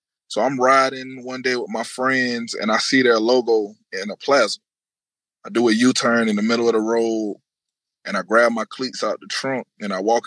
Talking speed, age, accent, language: 215 wpm, 20-39, American, English